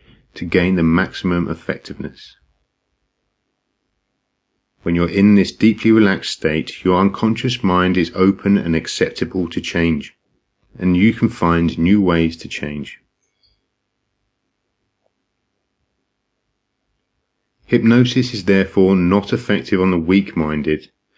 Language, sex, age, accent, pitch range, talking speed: English, male, 40-59, British, 85-105 Hz, 110 wpm